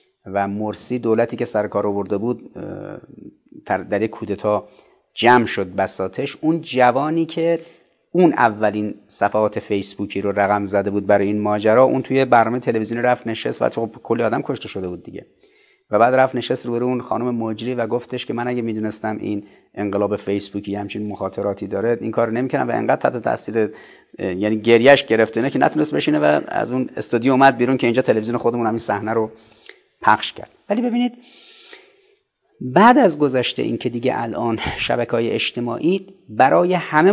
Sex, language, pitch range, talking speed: male, Persian, 105-135 Hz, 170 wpm